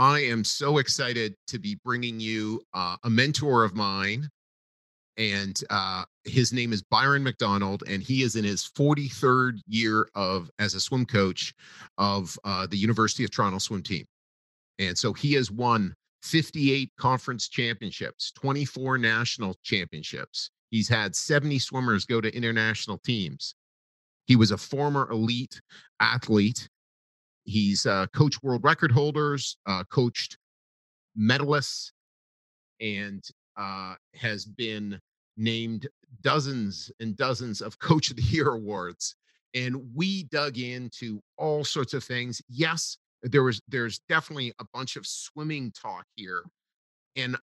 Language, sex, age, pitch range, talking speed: English, male, 40-59, 105-130 Hz, 135 wpm